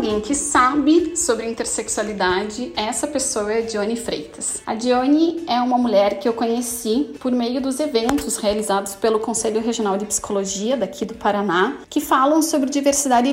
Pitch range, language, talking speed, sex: 225-295 Hz, Portuguese, 160 wpm, female